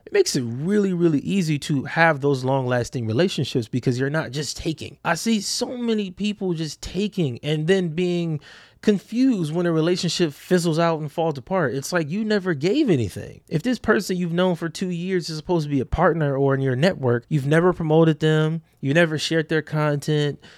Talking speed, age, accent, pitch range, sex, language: 200 wpm, 20-39, American, 135-180 Hz, male, English